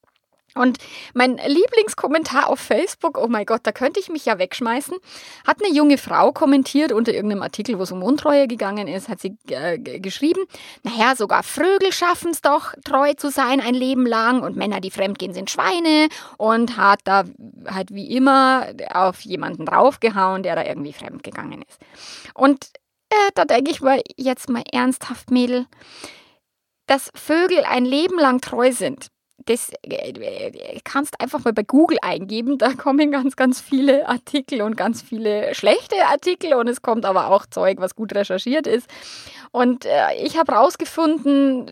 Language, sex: German, female